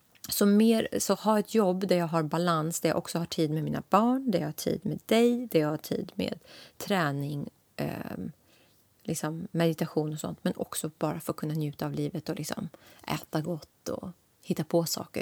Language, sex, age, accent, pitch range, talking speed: Swedish, female, 30-49, native, 155-200 Hz, 205 wpm